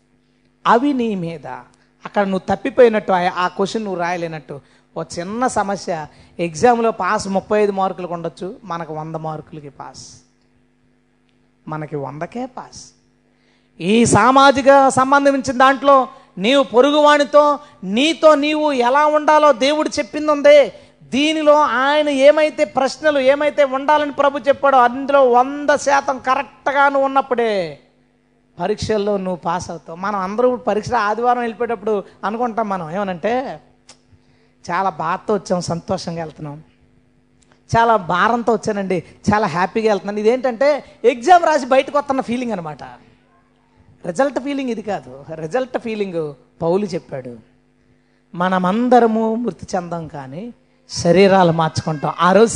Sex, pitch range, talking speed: female, 175-270 Hz, 110 wpm